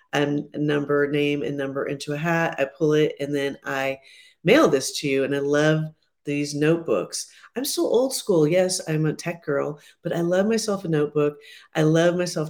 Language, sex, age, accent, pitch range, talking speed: English, female, 40-59, American, 150-180 Hz, 195 wpm